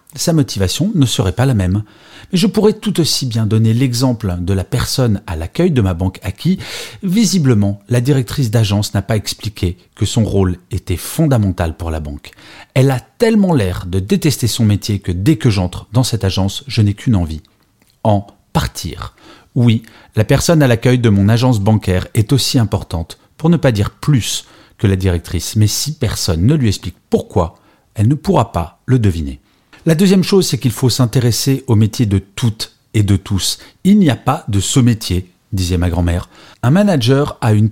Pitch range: 100-135 Hz